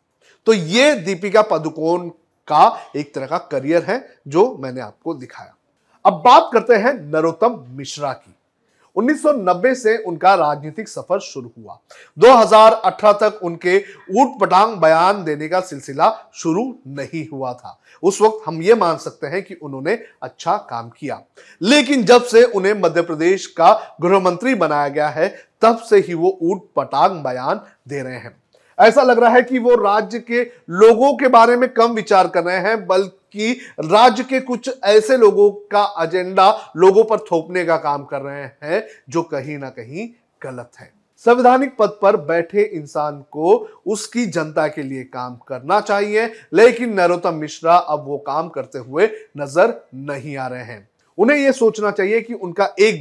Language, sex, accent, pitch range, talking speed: Hindi, male, native, 160-225 Hz, 165 wpm